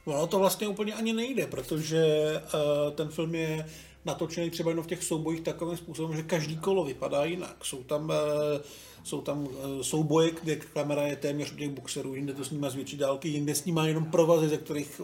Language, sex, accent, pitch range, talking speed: Czech, male, native, 150-185 Hz, 190 wpm